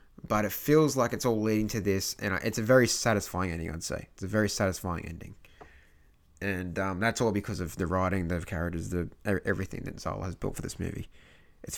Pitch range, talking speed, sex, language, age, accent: 85-110 Hz, 215 wpm, male, English, 20-39, Australian